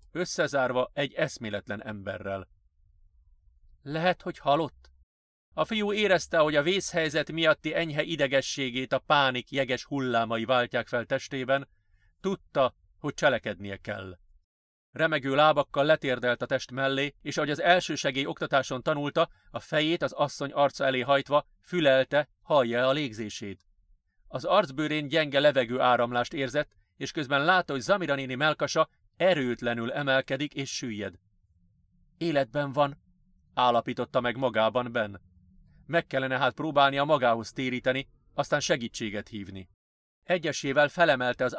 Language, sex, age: Hungarian, male, 40-59